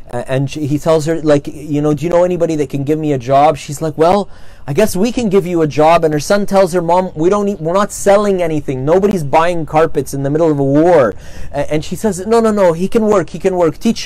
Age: 30-49